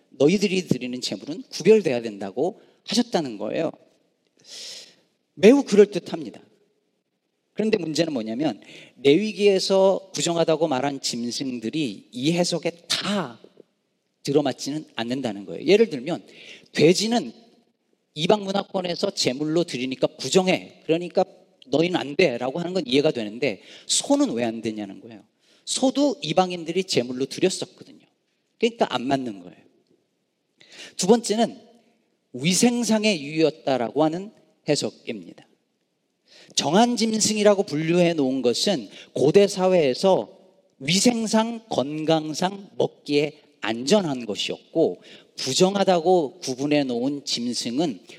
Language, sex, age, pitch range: Korean, male, 40-59, 140-210 Hz